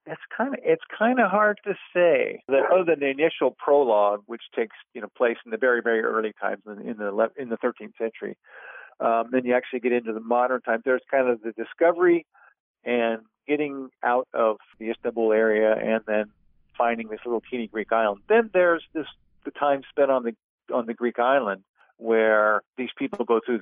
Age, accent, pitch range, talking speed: 50-69, American, 115-150 Hz, 205 wpm